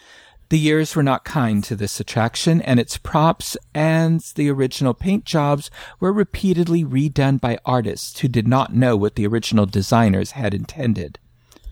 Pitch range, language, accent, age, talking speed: 115-165 Hz, English, American, 50-69, 160 wpm